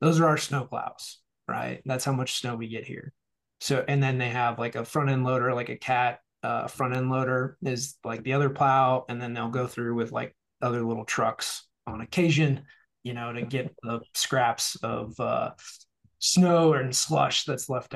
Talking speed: 200 wpm